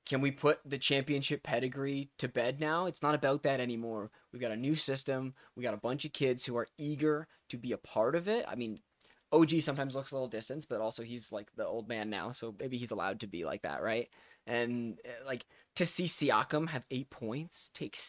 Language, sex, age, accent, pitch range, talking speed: English, male, 20-39, American, 120-150 Hz, 225 wpm